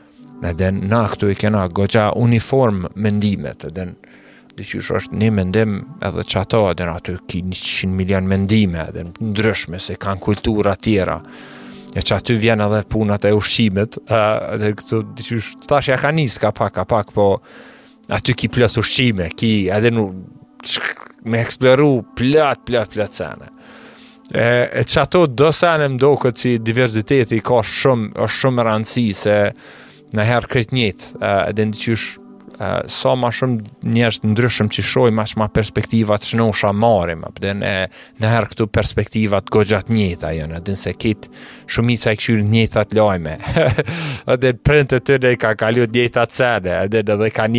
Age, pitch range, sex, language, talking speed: 30-49, 100-120 Hz, male, English, 105 wpm